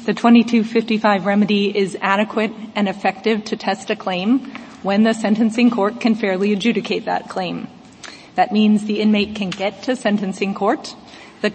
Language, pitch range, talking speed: English, 200-240 Hz, 155 wpm